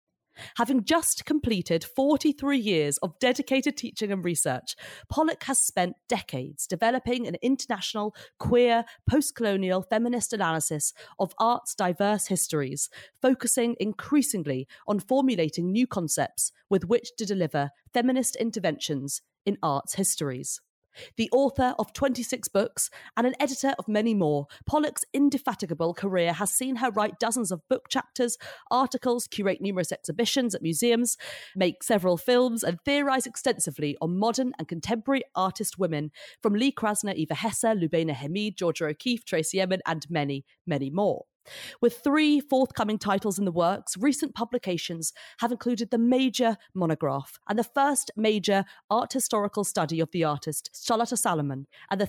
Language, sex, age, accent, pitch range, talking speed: English, female, 30-49, British, 165-240 Hz, 140 wpm